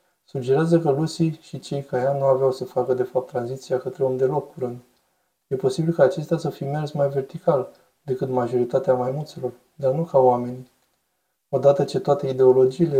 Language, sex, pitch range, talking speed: Romanian, male, 130-165 Hz, 180 wpm